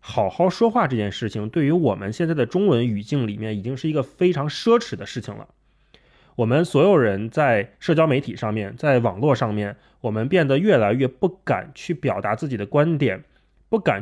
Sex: male